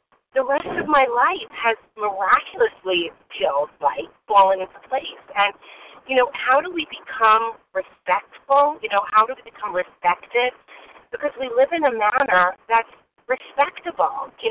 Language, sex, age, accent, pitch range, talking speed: English, female, 40-59, American, 195-290 Hz, 150 wpm